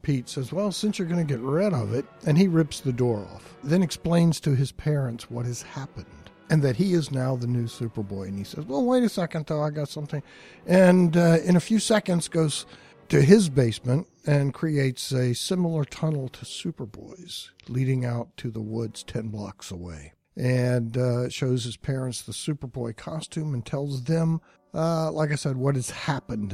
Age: 60-79